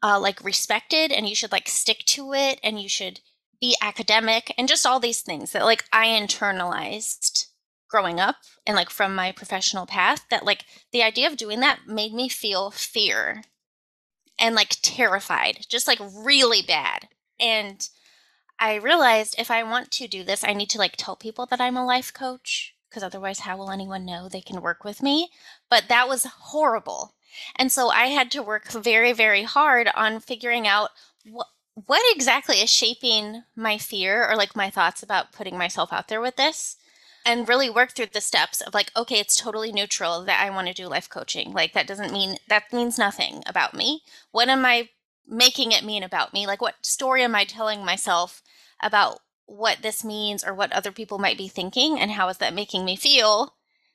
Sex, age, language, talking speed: female, 20-39, English, 195 wpm